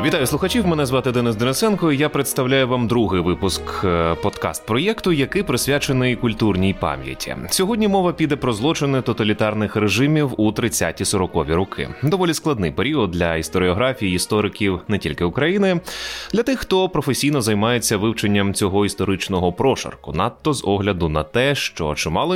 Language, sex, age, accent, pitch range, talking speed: Ukrainian, male, 20-39, native, 90-150 Hz, 135 wpm